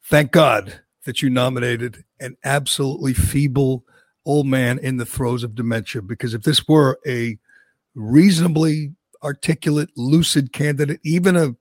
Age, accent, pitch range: 50-69, American, 130-155 Hz